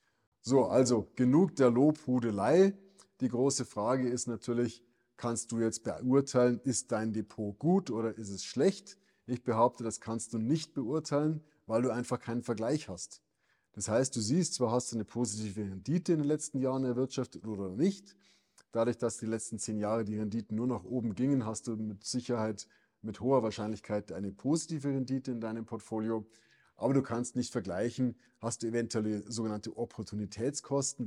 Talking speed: 170 wpm